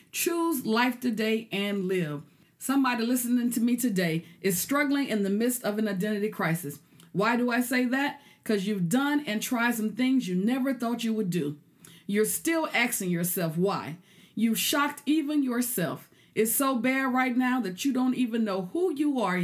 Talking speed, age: 180 wpm, 40-59